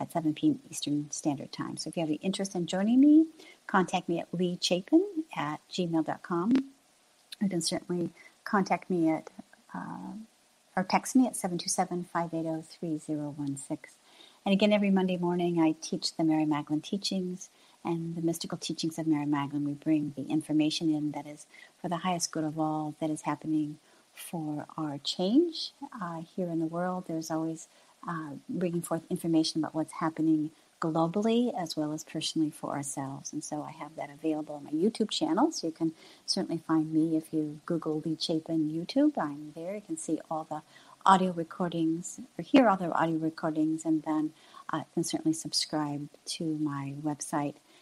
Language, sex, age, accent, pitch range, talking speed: English, female, 50-69, American, 155-190 Hz, 175 wpm